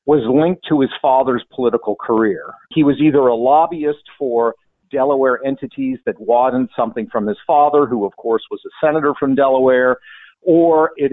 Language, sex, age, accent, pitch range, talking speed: English, male, 50-69, American, 130-170 Hz, 165 wpm